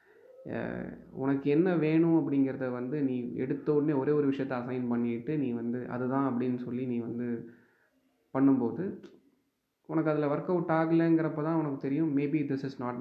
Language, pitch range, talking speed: Tamil, 120-160 Hz, 155 wpm